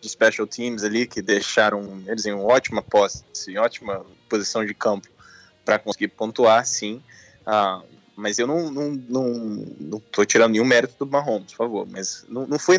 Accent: Brazilian